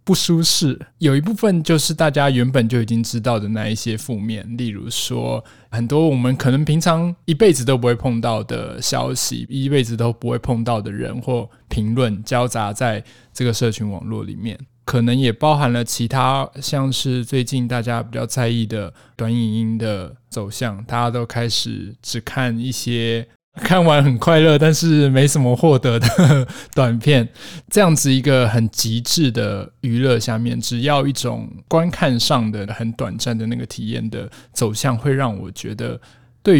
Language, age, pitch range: Chinese, 20-39, 115-135 Hz